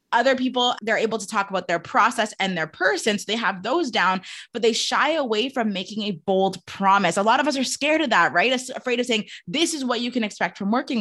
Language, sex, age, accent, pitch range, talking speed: English, female, 20-39, American, 195-255 Hz, 250 wpm